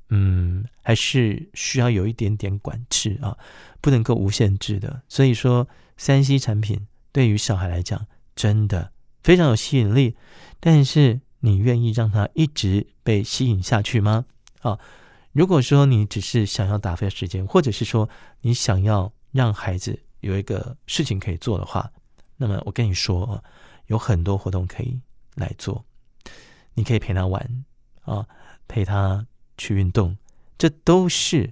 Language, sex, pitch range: Chinese, male, 100-130 Hz